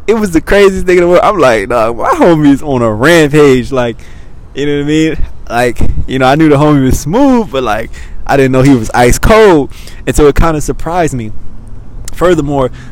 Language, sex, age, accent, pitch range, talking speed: English, male, 20-39, American, 115-140 Hz, 230 wpm